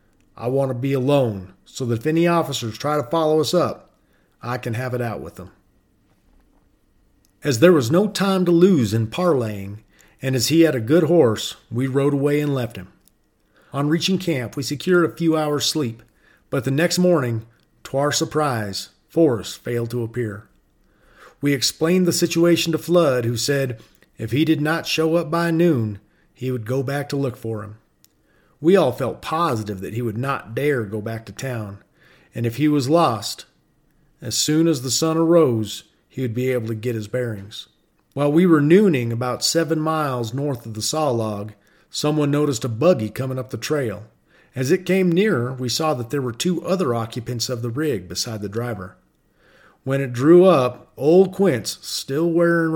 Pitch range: 115-160 Hz